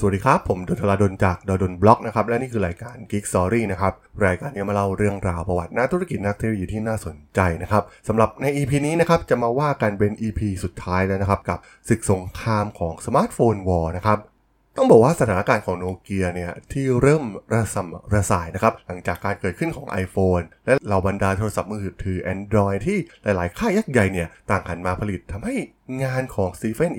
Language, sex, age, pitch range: Thai, male, 20-39, 95-115 Hz